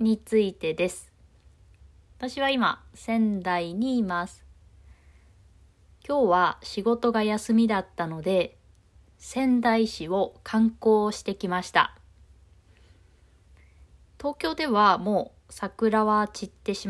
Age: 20-39